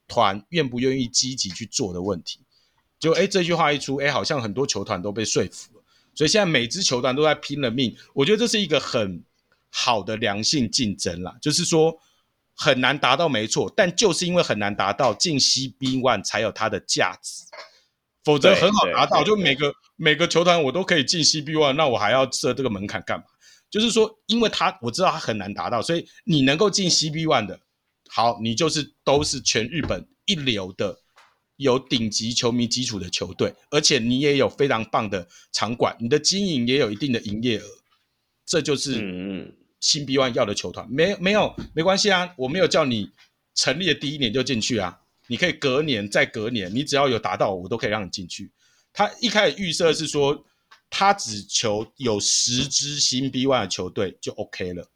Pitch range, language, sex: 115-160 Hz, Chinese, male